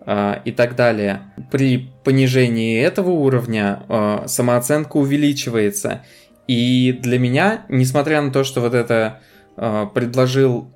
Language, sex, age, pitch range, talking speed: Russian, male, 20-39, 115-130 Hz, 105 wpm